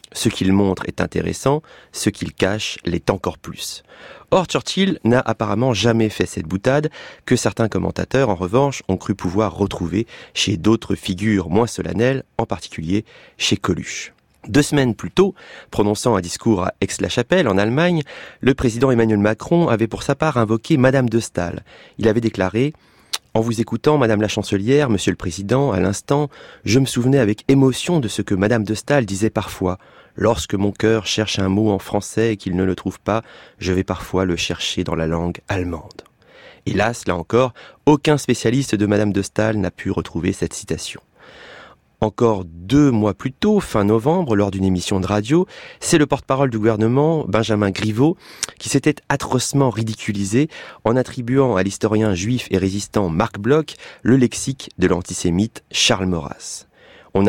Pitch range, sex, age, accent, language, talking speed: 95-130 Hz, male, 30-49, French, French, 175 wpm